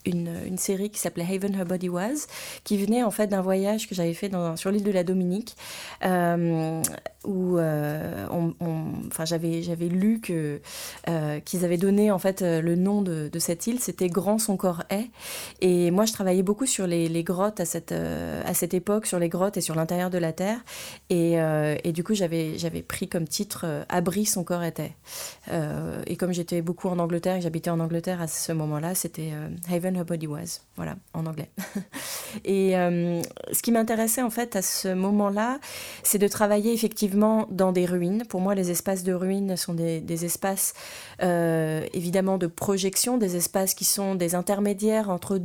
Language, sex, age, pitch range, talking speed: French, female, 30-49, 170-205 Hz, 180 wpm